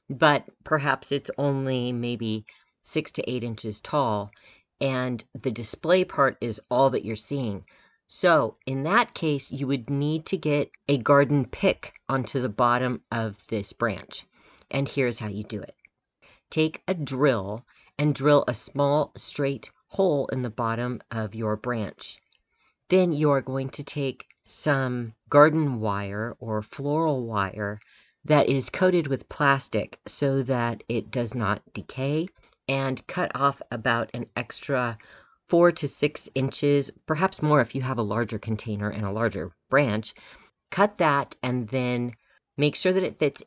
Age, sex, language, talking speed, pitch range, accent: 40-59, female, English, 155 wpm, 115-145 Hz, American